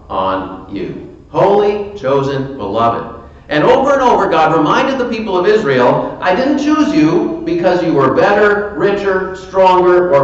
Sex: male